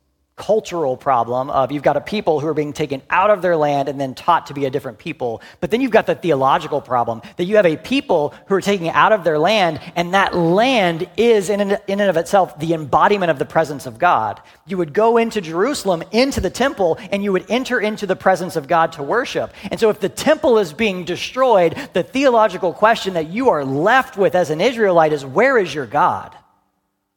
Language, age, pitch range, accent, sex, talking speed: English, 40-59, 130-190 Hz, American, male, 225 wpm